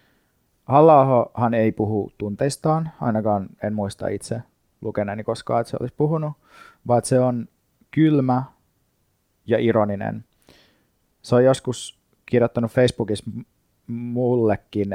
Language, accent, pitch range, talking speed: Finnish, native, 105-120 Hz, 105 wpm